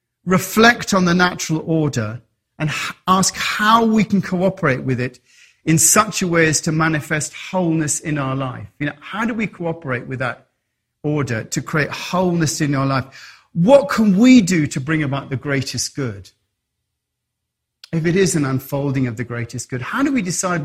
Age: 40-59